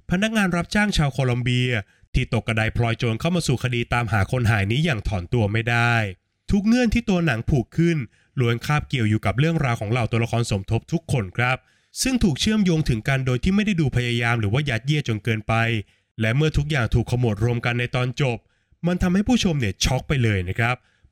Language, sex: Thai, male